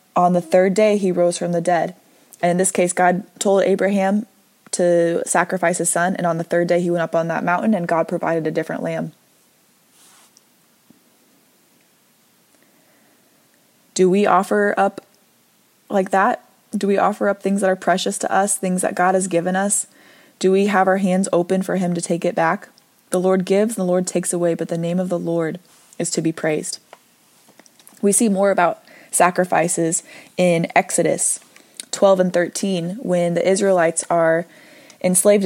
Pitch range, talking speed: 170-195 Hz, 175 wpm